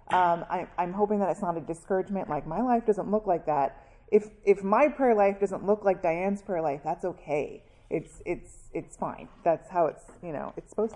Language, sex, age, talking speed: English, female, 30-49, 220 wpm